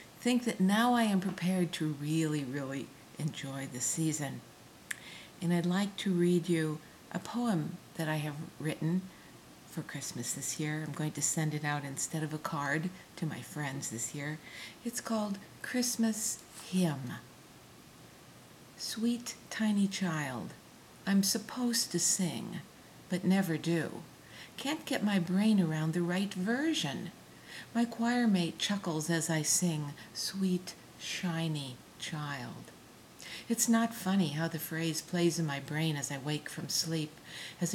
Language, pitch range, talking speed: English, 155-200 Hz, 145 wpm